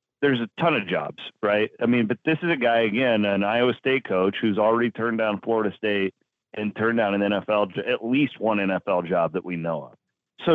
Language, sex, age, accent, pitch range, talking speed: English, male, 40-59, American, 100-125 Hz, 220 wpm